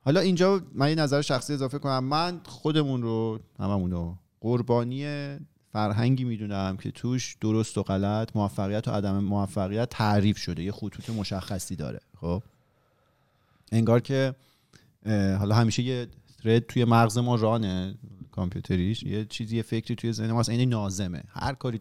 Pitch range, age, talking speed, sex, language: 105-135 Hz, 30-49, 145 wpm, male, Persian